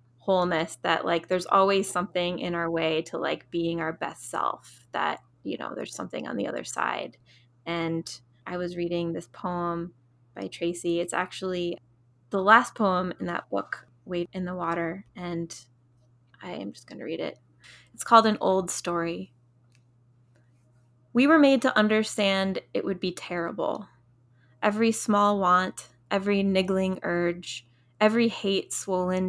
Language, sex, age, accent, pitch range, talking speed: English, female, 20-39, American, 125-195 Hz, 155 wpm